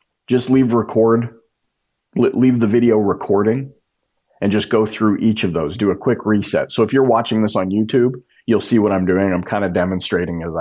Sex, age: male, 30-49